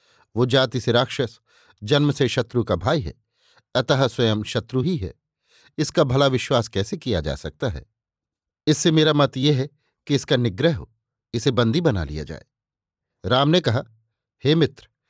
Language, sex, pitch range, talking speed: Hindi, male, 115-150 Hz, 165 wpm